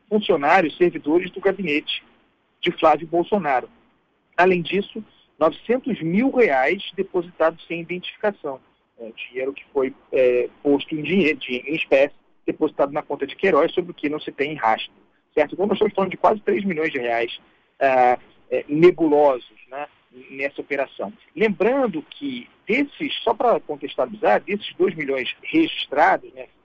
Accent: Brazilian